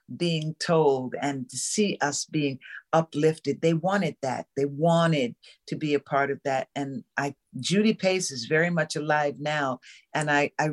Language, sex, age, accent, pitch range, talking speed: English, female, 50-69, American, 145-180 Hz, 175 wpm